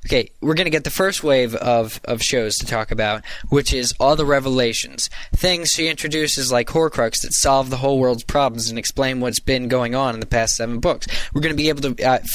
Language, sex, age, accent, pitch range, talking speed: English, male, 10-29, American, 120-155 Hz, 235 wpm